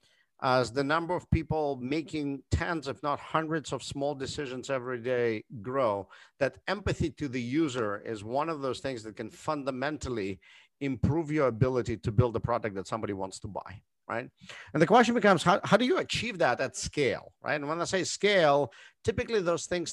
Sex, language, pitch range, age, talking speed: male, English, 125-165 Hz, 50-69, 190 wpm